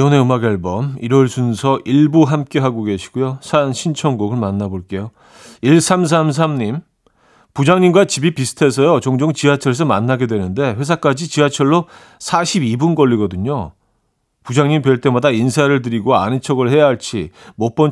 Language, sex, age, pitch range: Korean, male, 40-59, 115-155 Hz